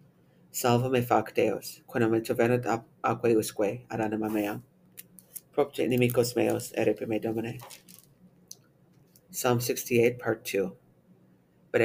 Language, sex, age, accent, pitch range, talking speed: English, female, 40-59, American, 110-120 Hz, 70 wpm